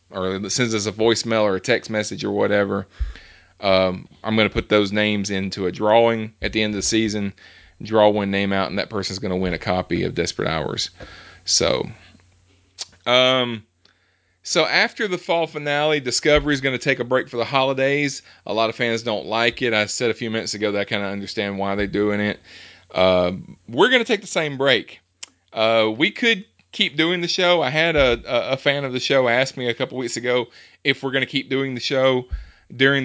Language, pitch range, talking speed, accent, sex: English, 100-135 Hz, 215 wpm, American, male